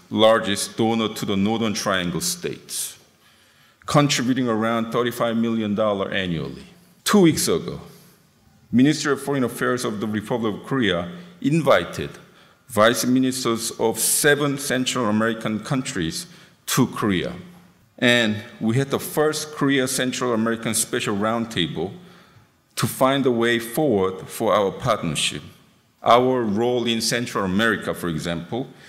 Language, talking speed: English, 125 wpm